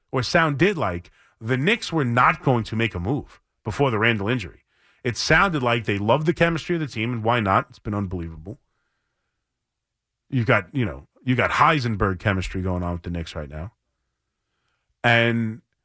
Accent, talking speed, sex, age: American, 185 wpm, male, 30-49